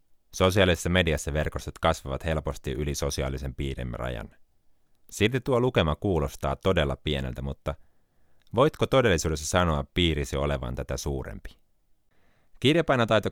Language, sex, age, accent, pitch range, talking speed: Finnish, male, 30-49, native, 70-90 Hz, 110 wpm